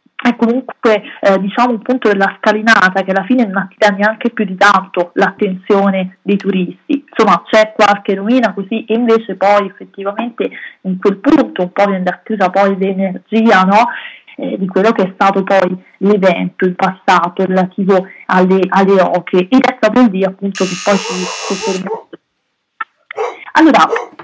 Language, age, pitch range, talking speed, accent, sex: Italian, 30-49, 190-230 Hz, 155 wpm, native, female